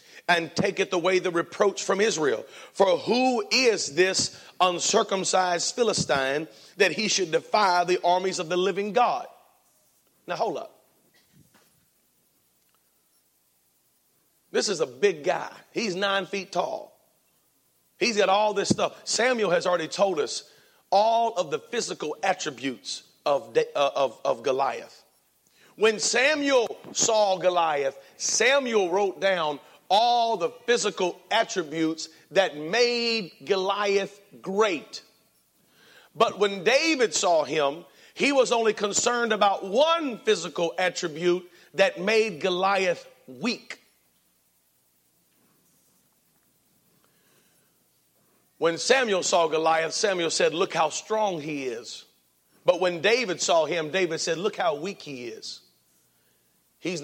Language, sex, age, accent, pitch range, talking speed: English, male, 40-59, American, 160-220 Hz, 115 wpm